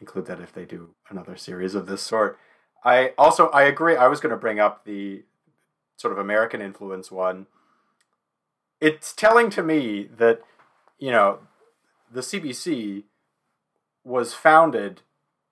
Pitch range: 100-130 Hz